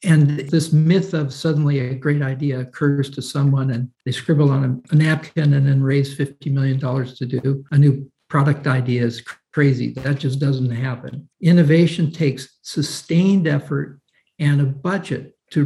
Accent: American